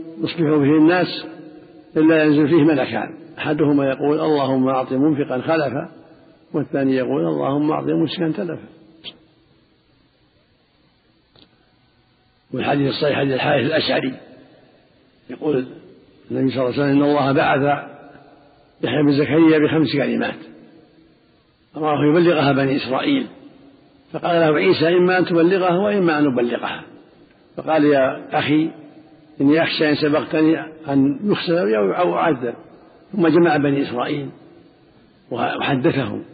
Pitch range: 140-165 Hz